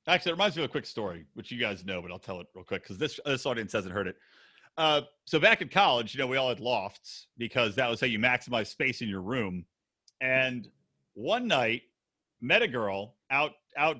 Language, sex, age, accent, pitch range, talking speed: English, male, 40-59, American, 130-205 Hz, 230 wpm